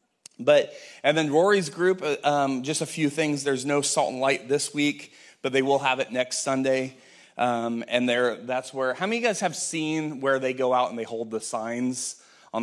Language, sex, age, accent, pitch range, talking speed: English, male, 30-49, American, 115-145 Hz, 215 wpm